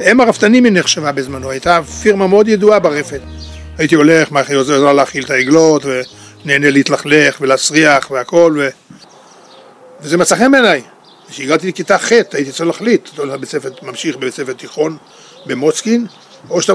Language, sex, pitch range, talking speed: Hebrew, male, 135-175 Hz, 155 wpm